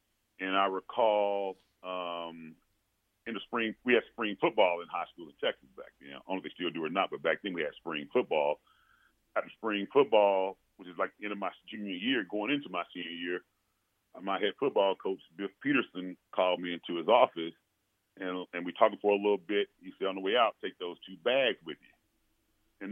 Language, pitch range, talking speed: English, 95-115 Hz, 215 wpm